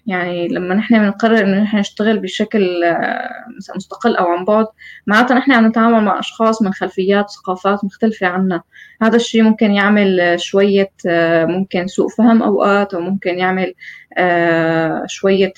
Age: 20-39